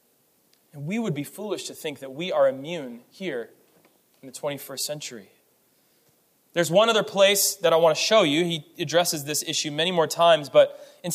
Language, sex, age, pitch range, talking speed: English, male, 20-39, 160-240 Hz, 190 wpm